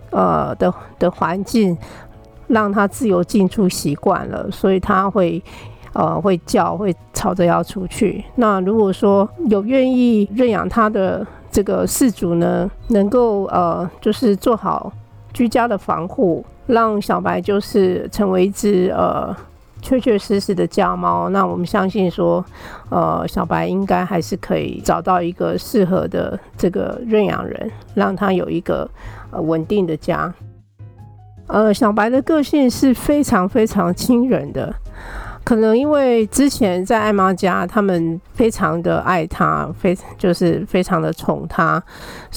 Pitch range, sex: 175-225 Hz, female